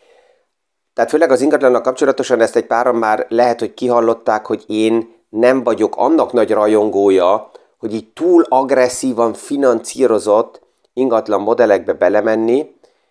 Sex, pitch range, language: male, 105-125 Hz, Hungarian